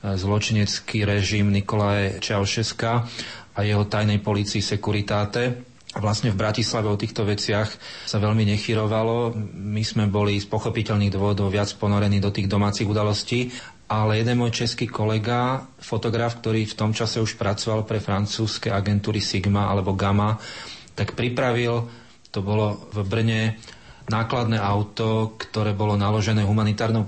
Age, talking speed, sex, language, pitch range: 30-49, 135 wpm, male, Slovak, 105-115 Hz